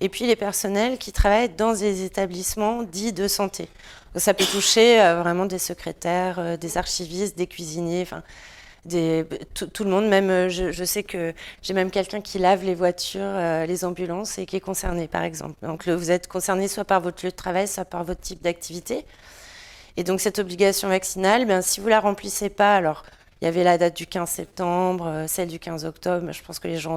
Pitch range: 170-200 Hz